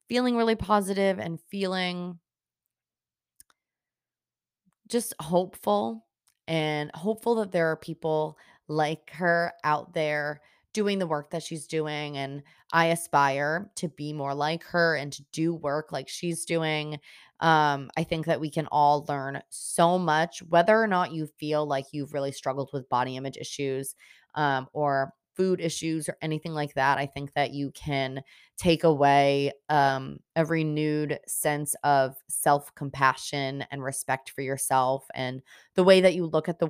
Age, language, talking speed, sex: 20-39, English, 155 wpm, female